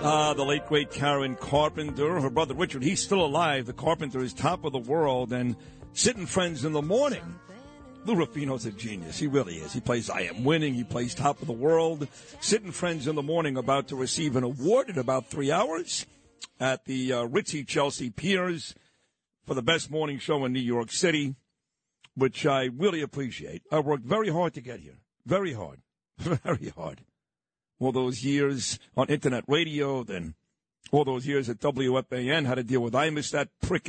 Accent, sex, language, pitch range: American, male, English, 130-160 Hz